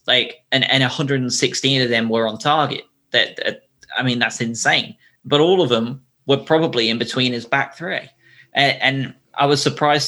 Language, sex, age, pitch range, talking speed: English, male, 20-39, 110-130 Hz, 185 wpm